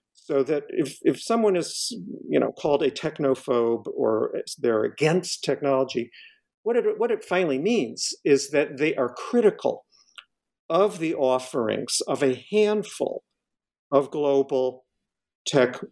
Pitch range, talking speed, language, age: 125-215 Hz, 130 wpm, English, 50-69